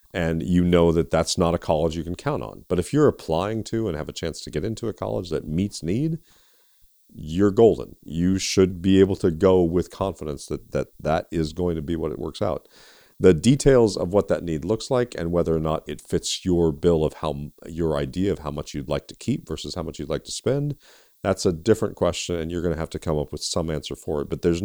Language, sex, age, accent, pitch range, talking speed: English, male, 40-59, American, 75-95 Hz, 250 wpm